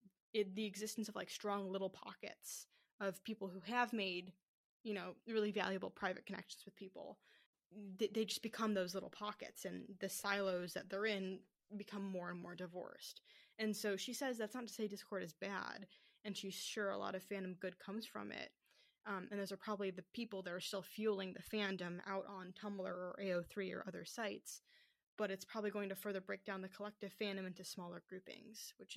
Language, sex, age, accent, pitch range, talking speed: English, female, 10-29, American, 190-215 Hz, 200 wpm